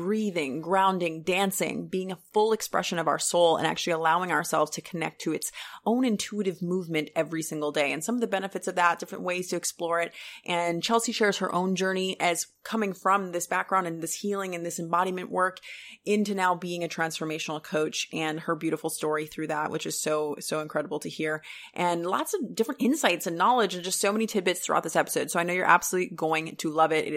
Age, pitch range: 30-49, 160-195 Hz